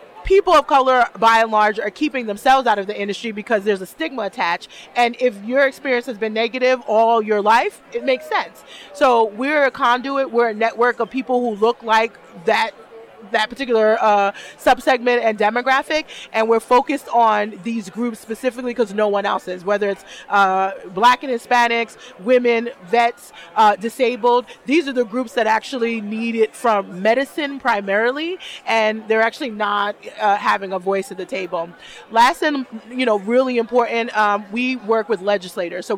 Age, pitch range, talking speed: 30-49, 210-250 Hz, 175 wpm